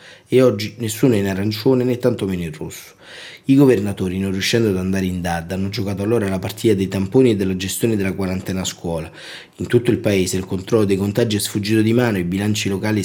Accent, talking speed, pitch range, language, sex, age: native, 225 wpm, 95-110 Hz, Italian, male, 30-49